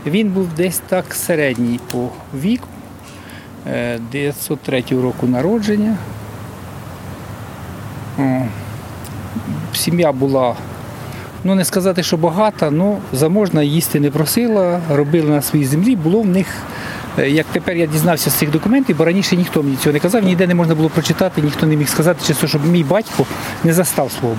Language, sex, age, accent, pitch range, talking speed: Ukrainian, male, 50-69, native, 125-175 Hz, 145 wpm